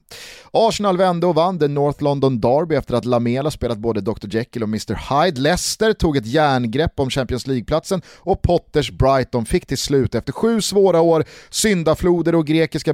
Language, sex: Swedish, male